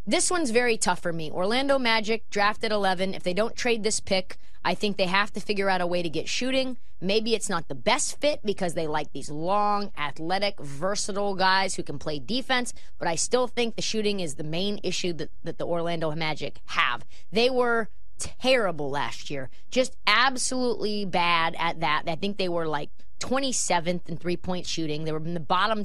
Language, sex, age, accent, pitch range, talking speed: English, female, 20-39, American, 170-225 Hz, 200 wpm